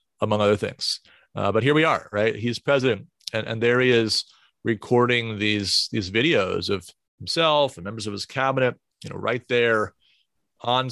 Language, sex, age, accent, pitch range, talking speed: English, male, 40-59, American, 105-130 Hz, 175 wpm